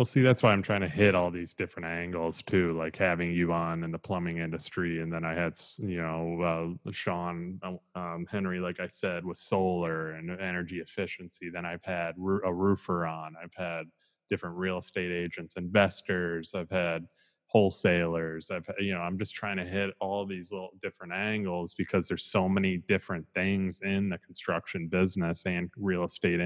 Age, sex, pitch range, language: 20-39, male, 85-95 Hz, English